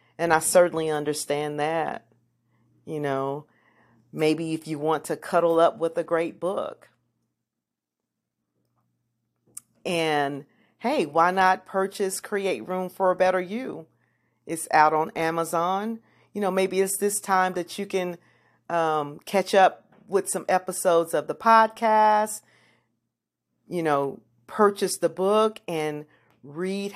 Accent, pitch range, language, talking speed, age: American, 135-195 Hz, English, 130 wpm, 40-59